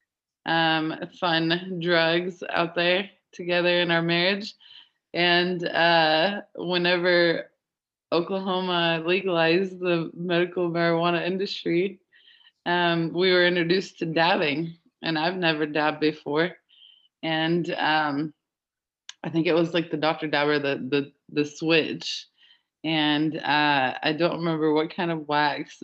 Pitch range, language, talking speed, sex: 160-210 Hz, English, 120 wpm, female